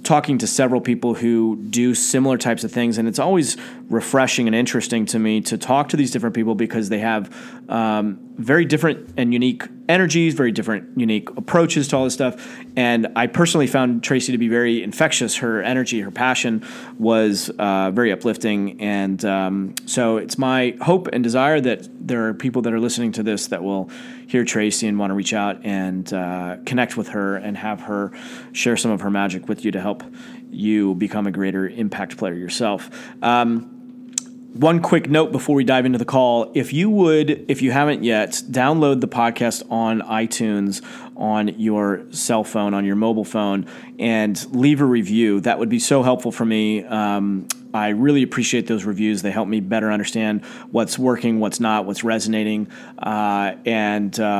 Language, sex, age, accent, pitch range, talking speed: English, male, 30-49, American, 105-130 Hz, 185 wpm